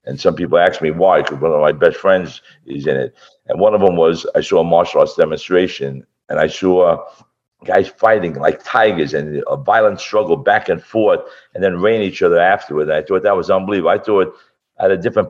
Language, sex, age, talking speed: English, male, 50-69, 230 wpm